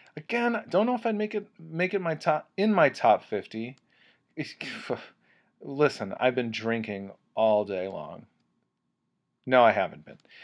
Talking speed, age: 150 wpm, 30-49